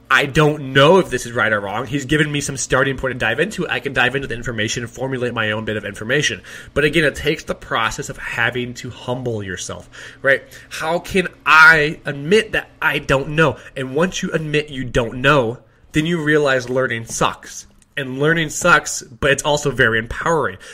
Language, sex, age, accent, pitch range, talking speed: English, male, 20-39, American, 115-150 Hz, 205 wpm